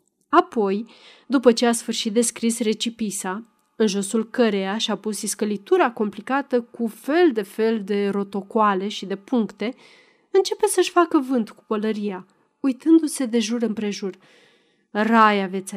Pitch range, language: 210-290 Hz, Romanian